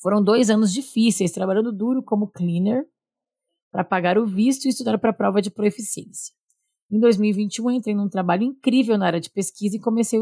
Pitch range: 195-245 Hz